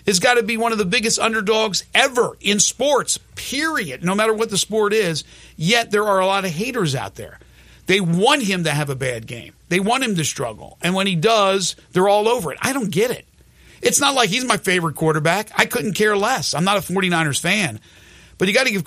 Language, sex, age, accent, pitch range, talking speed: English, male, 50-69, American, 155-210 Hz, 235 wpm